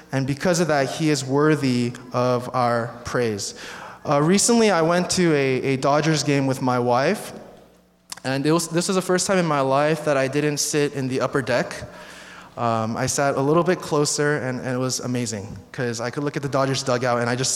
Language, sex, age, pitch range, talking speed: English, male, 20-39, 125-180 Hz, 210 wpm